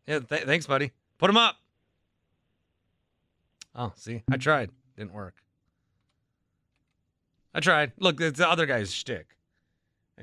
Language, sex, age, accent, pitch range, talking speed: English, male, 30-49, American, 110-160 Hz, 125 wpm